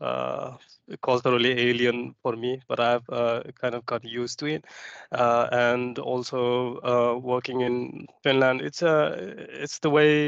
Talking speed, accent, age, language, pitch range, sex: 150 wpm, Indian, 20-39, Finnish, 120-140 Hz, male